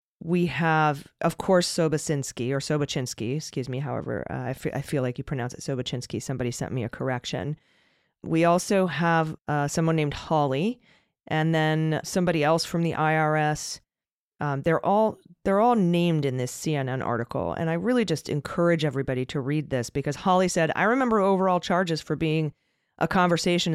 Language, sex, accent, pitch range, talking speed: English, female, American, 140-175 Hz, 175 wpm